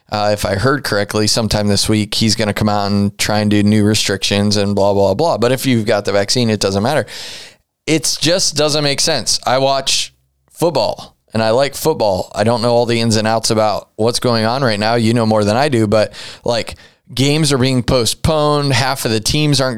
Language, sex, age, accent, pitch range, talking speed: English, male, 20-39, American, 110-135 Hz, 230 wpm